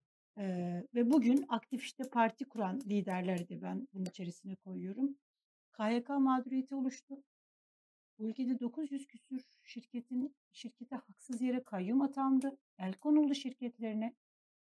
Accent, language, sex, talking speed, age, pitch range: native, Turkish, female, 115 wpm, 60-79, 210-260 Hz